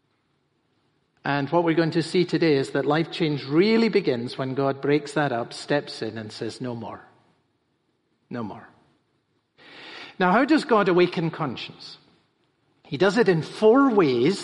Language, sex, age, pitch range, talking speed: English, male, 50-69, 145-190 Hz, 160 wpm